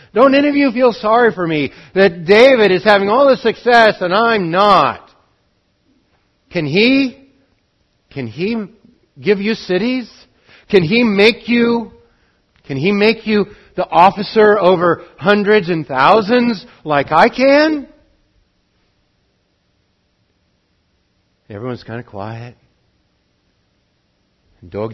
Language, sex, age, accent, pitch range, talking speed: English, male, 60-79, American, 125-210 Hz, 115 wpm